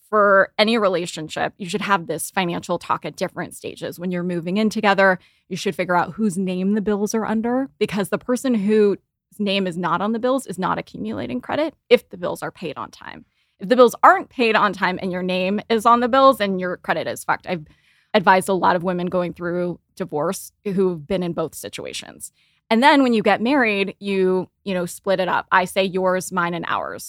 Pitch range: 180-215 Hz